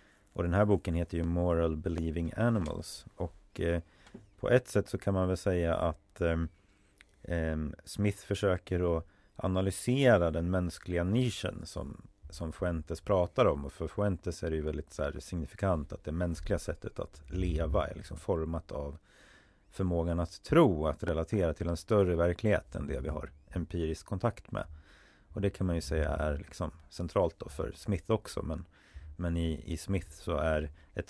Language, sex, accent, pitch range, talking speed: Swedish, male, native, 80-95 Hz, 175 wpm